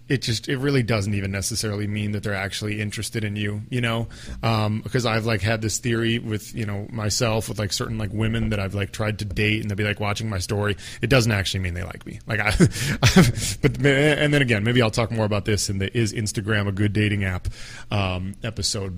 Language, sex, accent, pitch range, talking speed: English, male, American, 105-125 Hz, 235 wpm